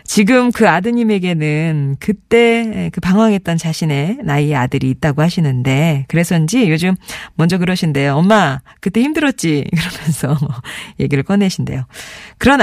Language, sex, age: Korean, female, 40-59